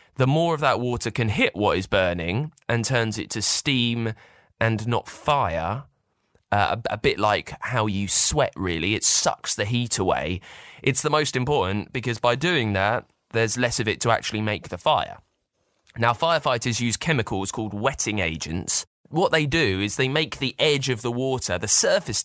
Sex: male